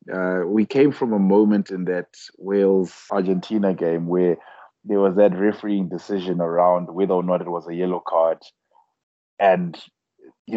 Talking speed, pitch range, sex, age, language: 155 wpm, 90-105 Hz, male, 20-39, English